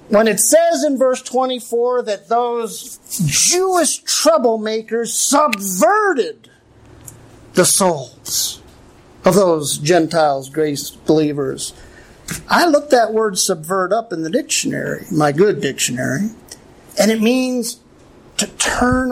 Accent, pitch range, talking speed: American, 185-255 Hz, 110 wpm